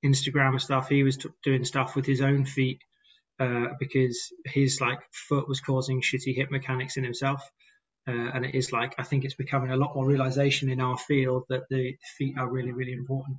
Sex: male